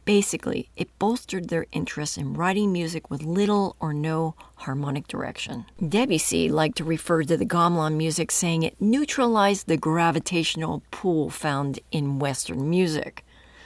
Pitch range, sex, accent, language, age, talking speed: 155-205 Hz, female, American, English, 40-59, 140 wpm